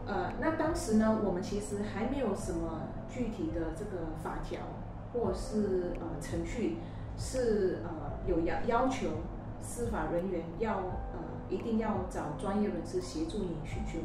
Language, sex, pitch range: Chinese, female, 165-220 Hz